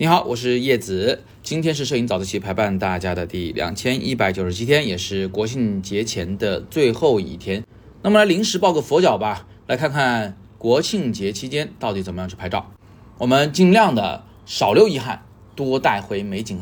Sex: male